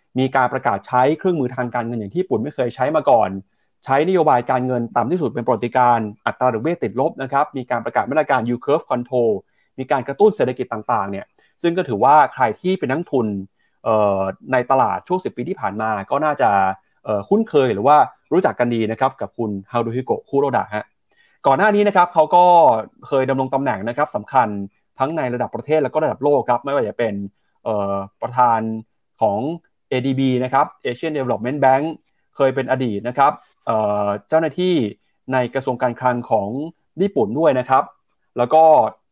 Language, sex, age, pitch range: Thai, male, 30-49, 115-150 Hz